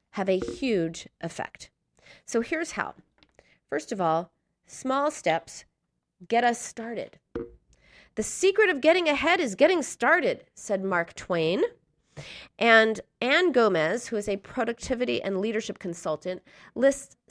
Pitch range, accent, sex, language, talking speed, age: 185-275 Hz, American, female, English, 130 wpm, 30-49